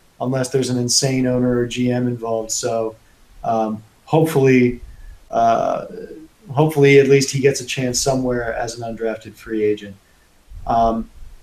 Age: 30-49